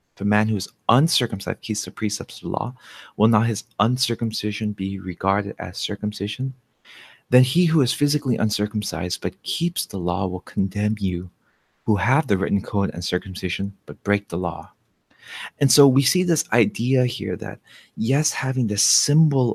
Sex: male